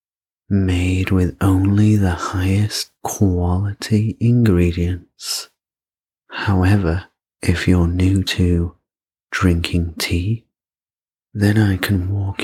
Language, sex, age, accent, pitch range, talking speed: English, male, 40-59, British, 90-100 Hz, 85 wpm